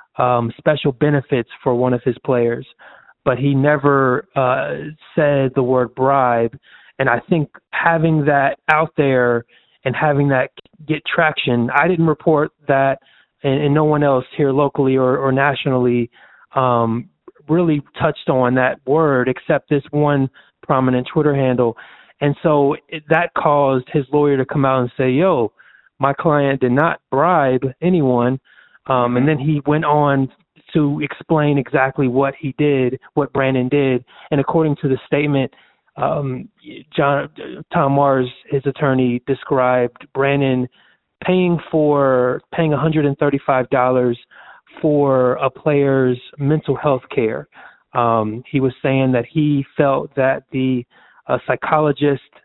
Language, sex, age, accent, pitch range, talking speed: English, male, 20-39, American, 130-150 Hz, 140 wpm